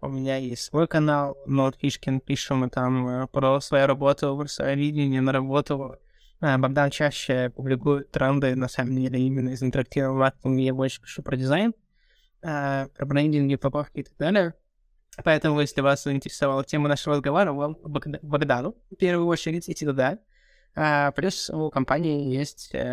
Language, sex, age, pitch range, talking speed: Russian, male, 20-39, 130-145 Hz, 160 wpm